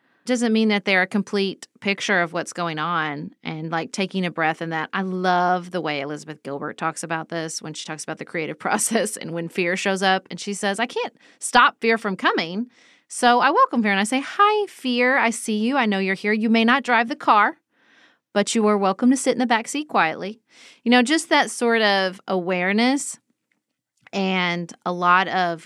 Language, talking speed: English, 215 wpm